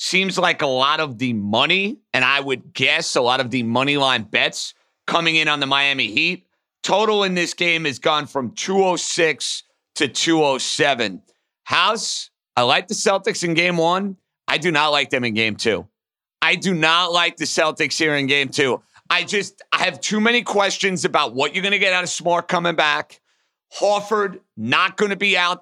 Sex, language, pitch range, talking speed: male, English, 155-200 Hz, 195 wpm